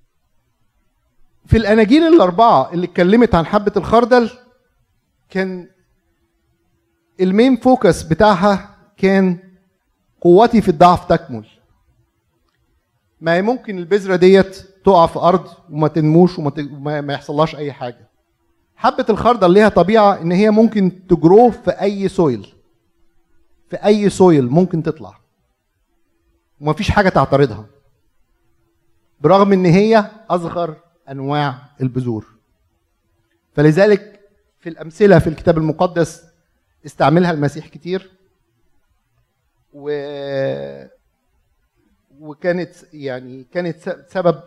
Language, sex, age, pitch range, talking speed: Arabic, male, 50-69, 130-185 Hz, 95 wpm